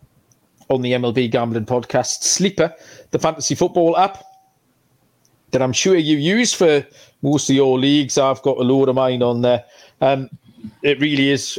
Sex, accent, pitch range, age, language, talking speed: male, British, 130-160 Hz, 40-59, English, 165 wpm